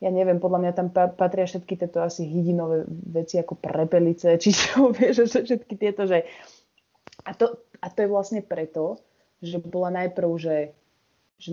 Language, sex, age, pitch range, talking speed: Slovak, female, 20-39, 165-190 Hz, 170 wpm